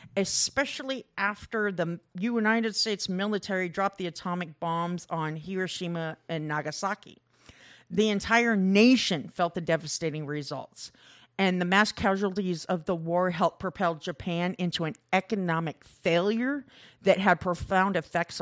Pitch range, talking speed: 165-220 Hz, 125 wpm